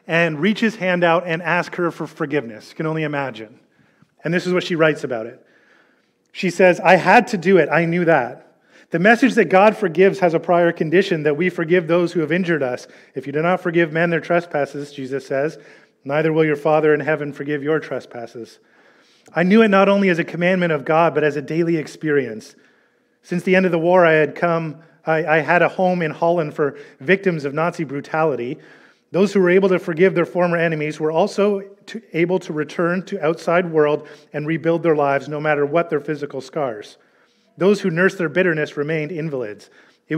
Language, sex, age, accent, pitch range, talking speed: English, male, 30-49, American, 150-185 Hz, 205 wpm